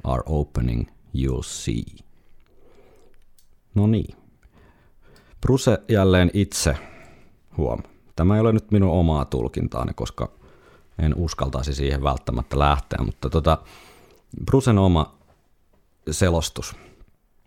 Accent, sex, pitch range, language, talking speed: native, male, 70-90 Hz, Finnish, 95 wpm